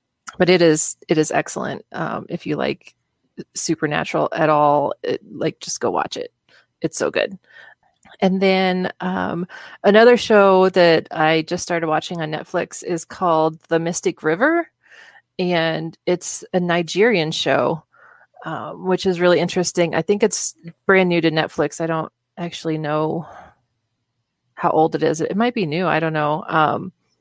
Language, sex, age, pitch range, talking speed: English, female, 30-49, 160-185 Hz, 160 wpm